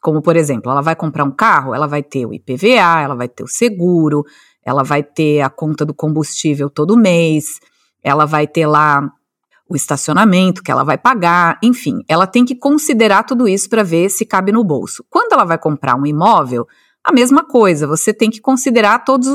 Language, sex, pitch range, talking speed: Portuguese, female, 155-245 Hz, 200 wpm